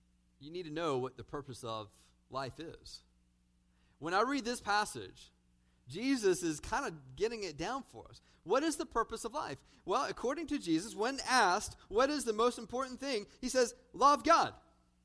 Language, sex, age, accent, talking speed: English, male, 40-59, American, 185 wpm